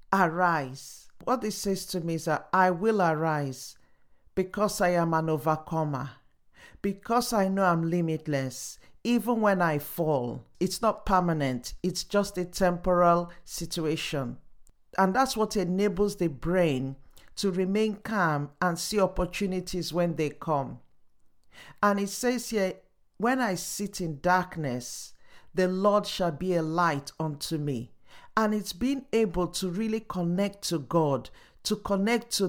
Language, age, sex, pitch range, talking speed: English, 50-69, male, 160-200 Hz, 140 wpm